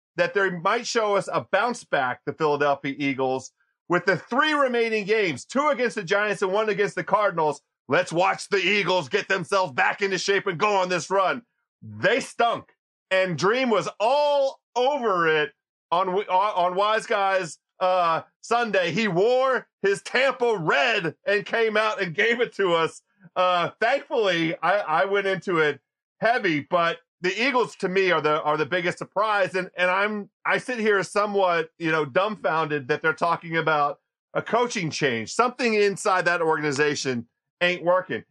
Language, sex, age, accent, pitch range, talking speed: English, male, 40-59, American, 170-225 Hz, 170 wpm